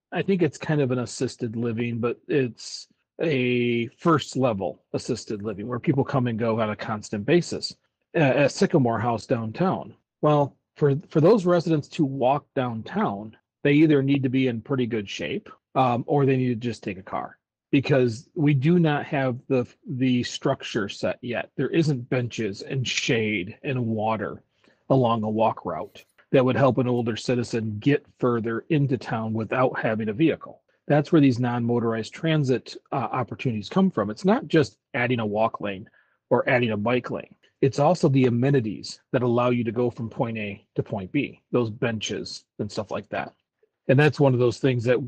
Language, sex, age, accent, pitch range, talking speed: English, male, 40-59, American, 115-145 Hz, 185 wpm